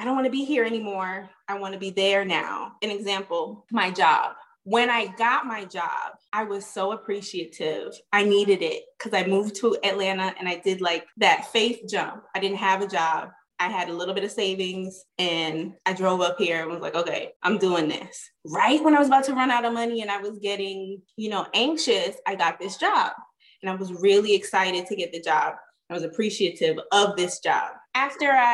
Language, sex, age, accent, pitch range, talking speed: English, female, 20-39, American, 190-235 Hz, 215 wpm